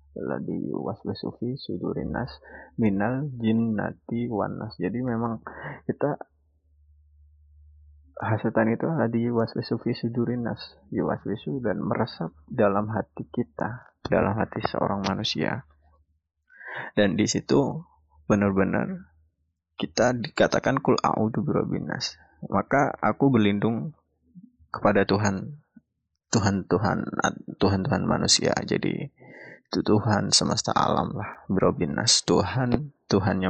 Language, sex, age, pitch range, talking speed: Indonesian, male, 20-39, 85-120 Hz, 95 wpm